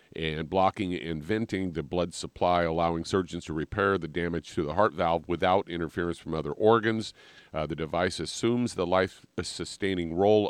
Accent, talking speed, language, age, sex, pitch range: American, 165 wpm, English, 40-59, male, 85-95 Hz